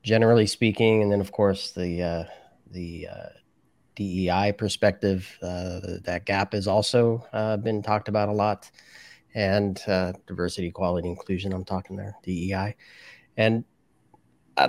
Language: English